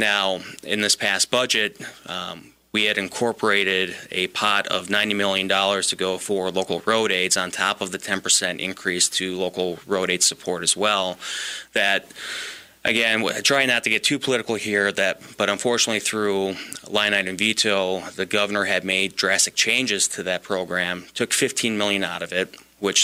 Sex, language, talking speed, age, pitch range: male, English, 175 wpm, 30-49, 95-105 Hz